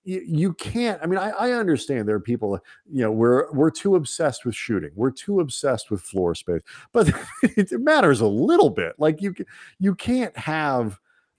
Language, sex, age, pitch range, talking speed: English, male, 40-59, 95-140 Hz, 185 wpm